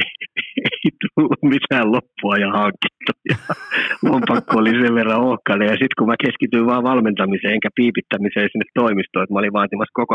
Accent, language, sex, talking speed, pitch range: native, Finnish, male, 170 wpm, 100-125 Hz